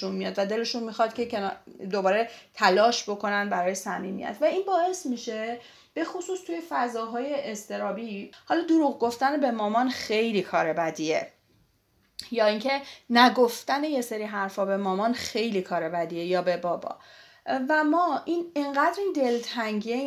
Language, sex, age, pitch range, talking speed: Persian, female, 30-49, 210-285 Hz, 140 wpm